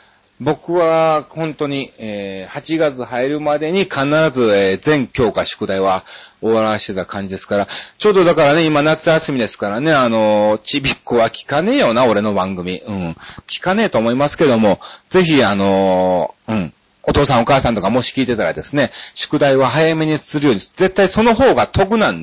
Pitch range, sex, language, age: 110-160 Hz, male, Japanese, 40-59